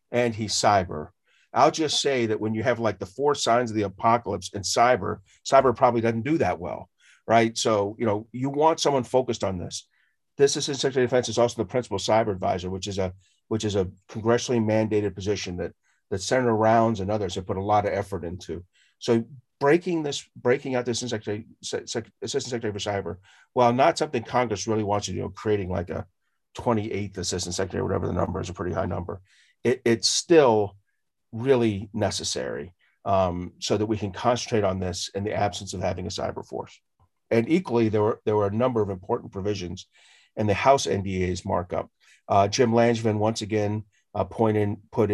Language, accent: English, American